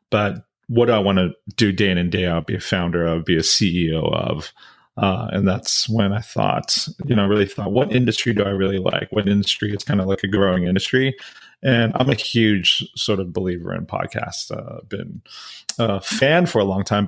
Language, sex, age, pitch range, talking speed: English, male, 30-49, 95-120 Hz, 225 wpm